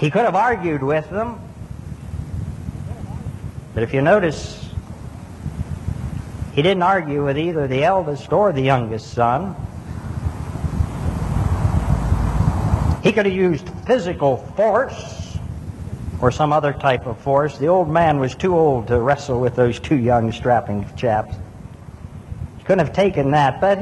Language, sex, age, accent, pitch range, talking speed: English, male, 60-79, American, 120-180 Hz, 135 wpm